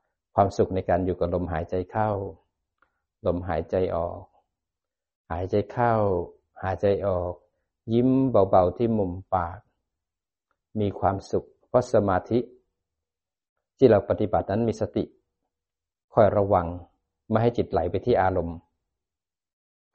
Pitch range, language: 85-105 Hz, Thai